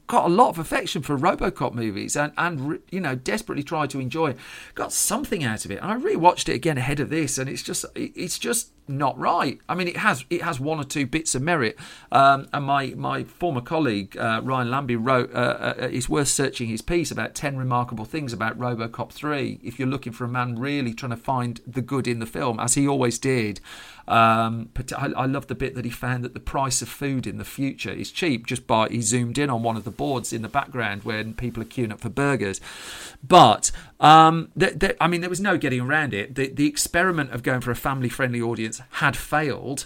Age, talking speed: 40-59, 235 wpm